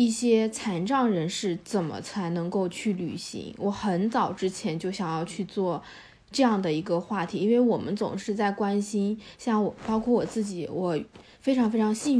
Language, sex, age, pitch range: Chinese, female, 20-39, 190-225 Hz